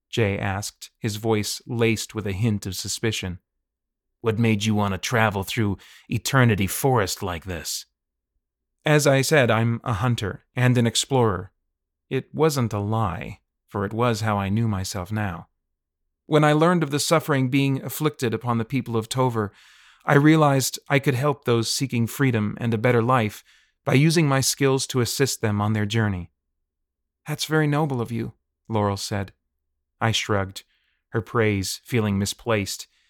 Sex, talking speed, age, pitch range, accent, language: male, 165 wpm, 30-49, 100-125 Hz, American, English